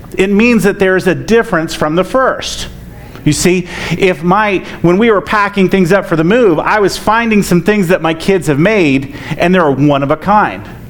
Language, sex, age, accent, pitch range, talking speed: English, male, 40-59, American, 145-200 Hz, 210 wpm